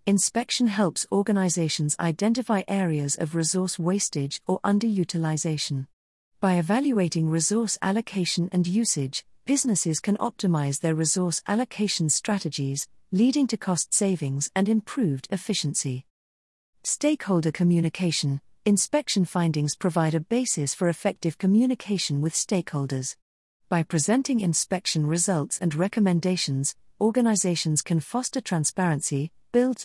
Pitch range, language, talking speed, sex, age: 155-205 Hz, English, 105 wpm, female, 40-59